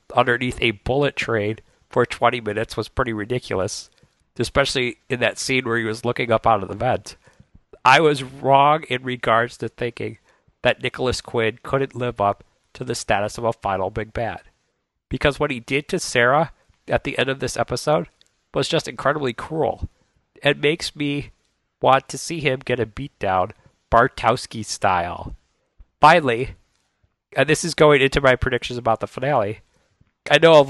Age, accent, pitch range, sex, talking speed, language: 40-59, American, 115-145 Hz, male, 170 wpm, English